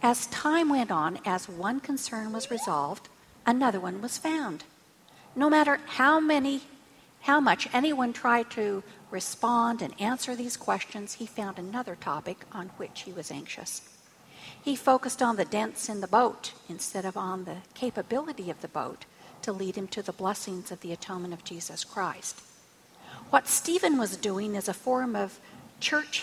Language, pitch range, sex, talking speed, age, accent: English, 195-265 Hz, female, 165 wpm, 50-69, American